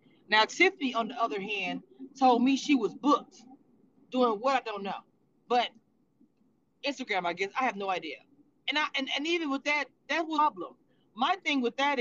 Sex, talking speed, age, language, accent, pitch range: female, 190 wpm, 30-49, English, American, 220-295 Hz